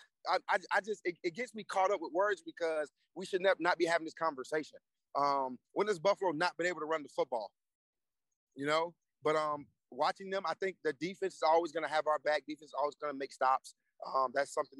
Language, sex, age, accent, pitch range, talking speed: English, male, 30-49, American, 130-150 Hz, 235 wpm